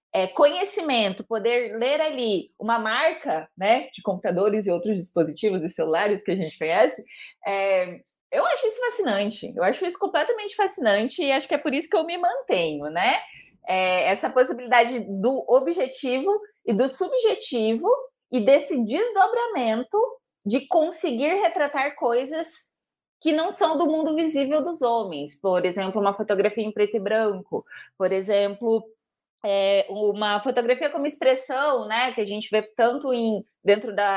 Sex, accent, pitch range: female, Brazilian, 205-300 Hz